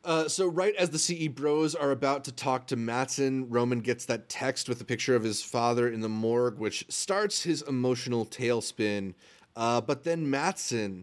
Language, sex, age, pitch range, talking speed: English, male, 30-49, 115-140 Hz, 190 wpm